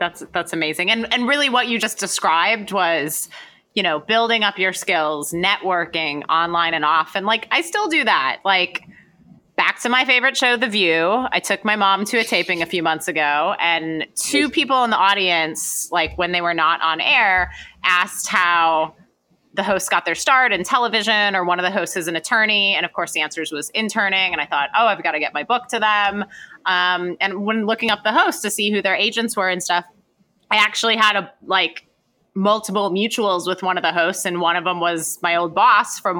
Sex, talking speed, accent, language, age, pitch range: female, 220 wpm, American, English, 30-49, 170-220 Hz